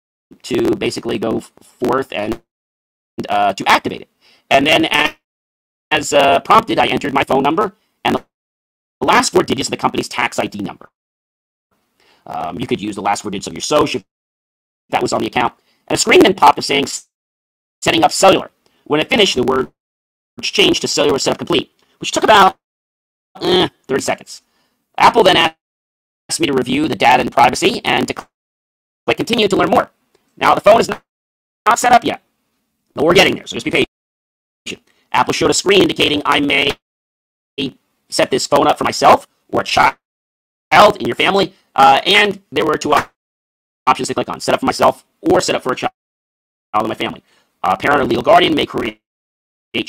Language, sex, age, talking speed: English, male, 40-59, 185 wpm